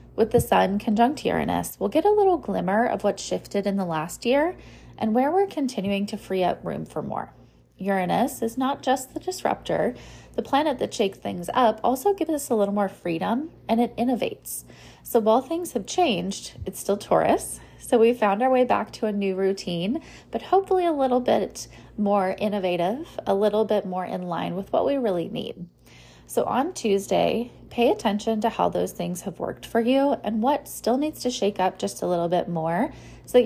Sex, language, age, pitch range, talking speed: female, English, 20-39, 190-245 Hz, 200 wpm